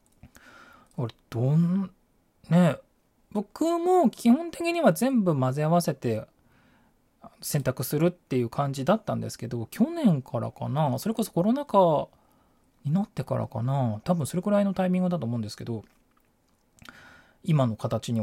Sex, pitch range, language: male, 115-190 Hz, Japanese